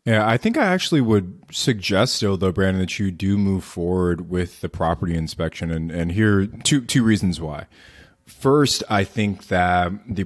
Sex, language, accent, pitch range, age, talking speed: male, English, American, 85-100 Hz, 20-39, 180 wpm